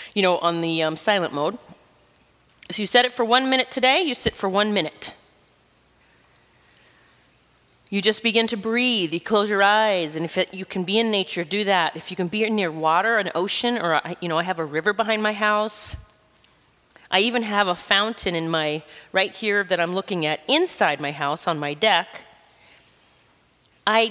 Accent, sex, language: American, female, English